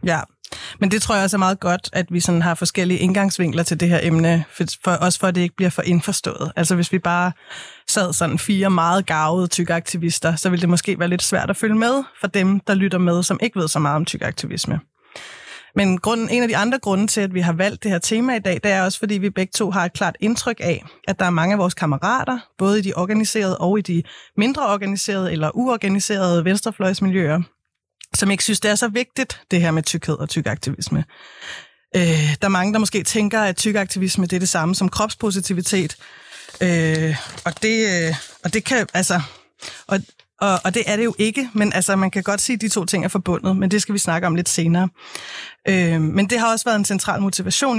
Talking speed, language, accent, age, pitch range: 225 wpm, Danish, native, 30-49, 175-205 Hz